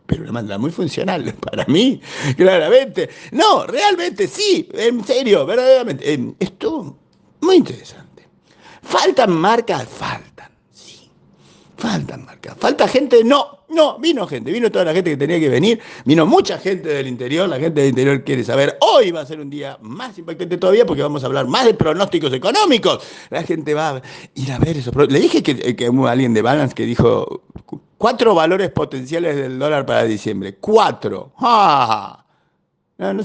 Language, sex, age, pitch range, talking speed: Spanish, male, 50-69, 160-260 Hz, 165 wpm